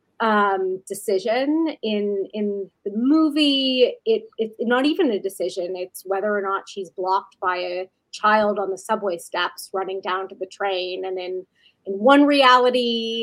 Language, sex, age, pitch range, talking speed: English, female, 30-49, 190-235 Hz, 160 wpm